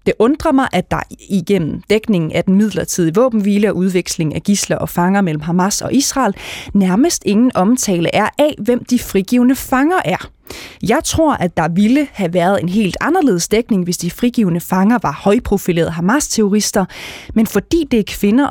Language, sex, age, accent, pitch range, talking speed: Danish, female, 20-39, native, 180-235 Hz, 175 wpm